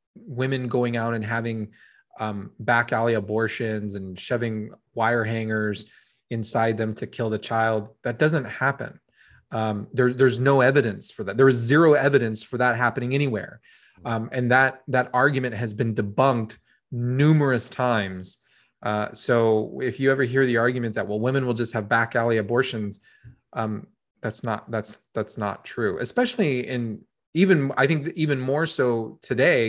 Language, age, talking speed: English, 20-39, 160 wpm